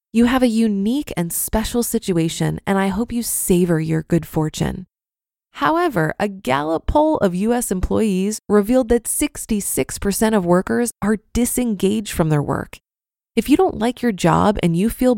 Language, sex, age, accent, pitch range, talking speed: English, female, 20-39, American, 180-245 Hz, 160 wpm